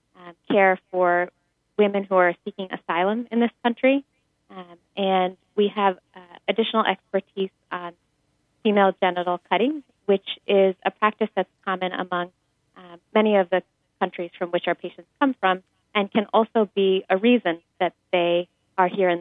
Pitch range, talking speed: 180-200 Hz, 155 wpm